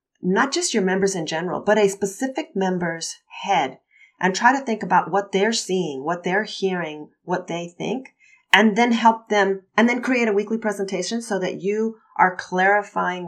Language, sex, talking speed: English, female, 180 wpm